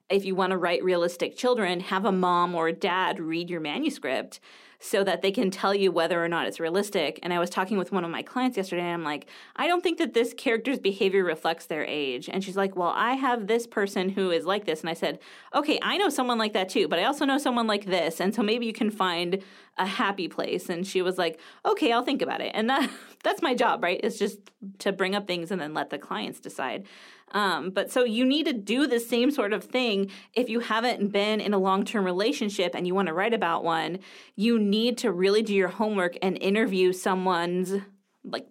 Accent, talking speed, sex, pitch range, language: American, 240 wpm, female, 185-235 Hz, English